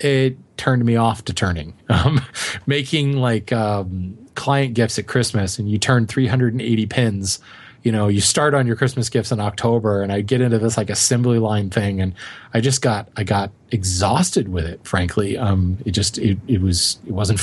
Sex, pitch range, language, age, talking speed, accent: male, 110-130 Hz, English, 30-49, 195 wpm, American